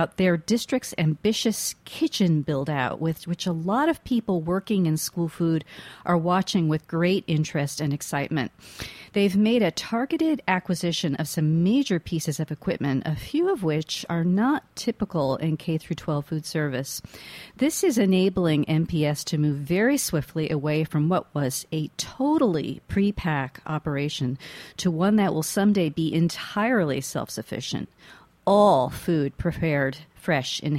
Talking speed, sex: 140 wpm, female